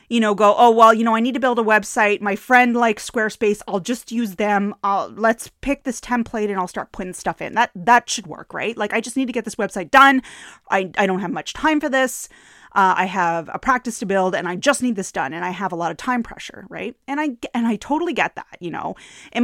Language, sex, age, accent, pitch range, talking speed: English, female, 30-49, American, 200-275 Hz, 265 wpm